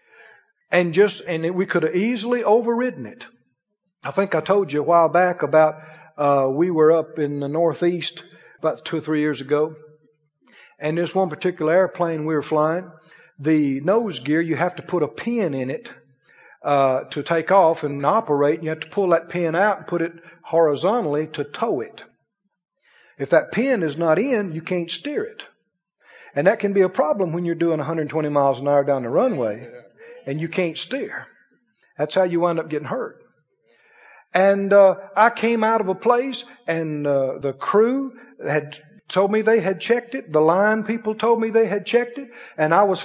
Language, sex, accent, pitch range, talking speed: English, male, American, 160-225 Hz, 195 wpm